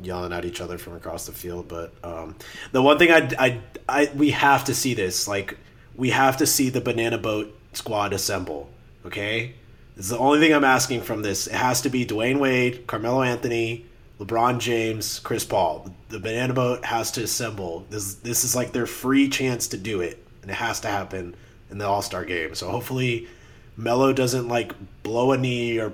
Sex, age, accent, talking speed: male, 30-49, American, 200 wpm